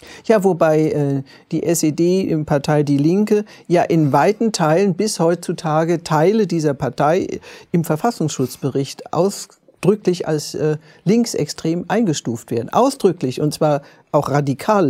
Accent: German